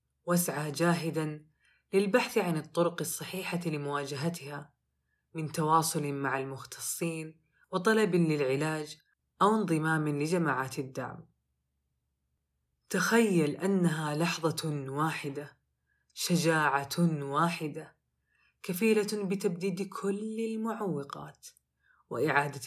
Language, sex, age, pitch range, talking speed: Arabic, female, 20-39, 145-175 Hz, 75 wpm